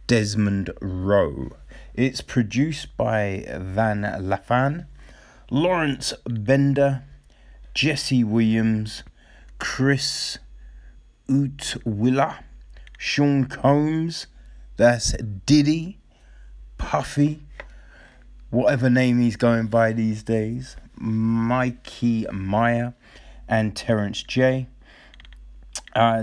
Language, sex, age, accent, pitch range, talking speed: English, male, 30-49, British, 100-140 Hz, 70 wpm